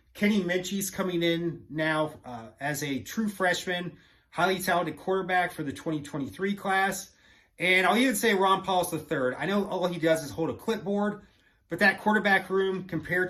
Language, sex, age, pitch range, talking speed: English, male, 30-49, 130-185 Hz, 175 wpm